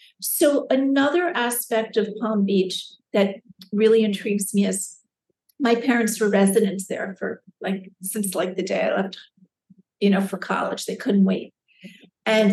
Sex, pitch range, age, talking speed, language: female, 195-230 Hz, 50-69, 155 wpm, English